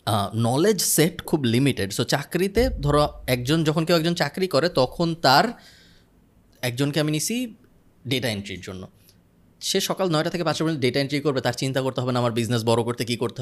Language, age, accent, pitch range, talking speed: Bengali, 20-39, native, 105-145 Hz, 185 wpm